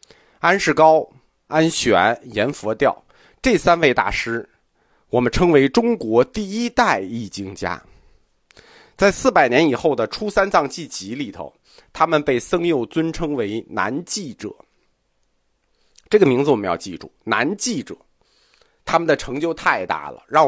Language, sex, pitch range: Chinese, male, 130-215 Hz